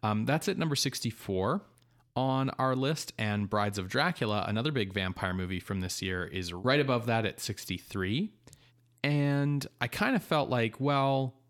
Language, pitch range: English, 105-135 Hz